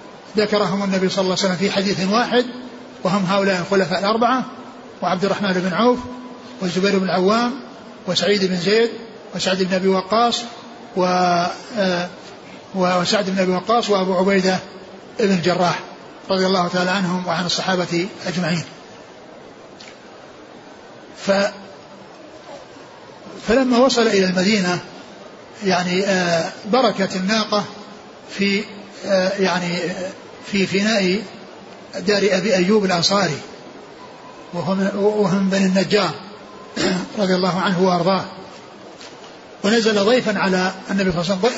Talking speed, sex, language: 105 wpm, male, Arabic